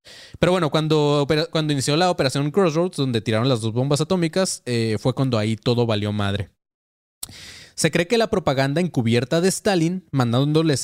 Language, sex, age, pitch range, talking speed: Spanish, male, 20-39, 110-155 Hz, 165 wpm